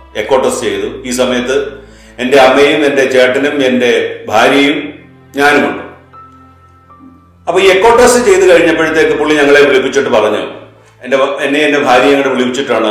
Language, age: Malayalam, 40-59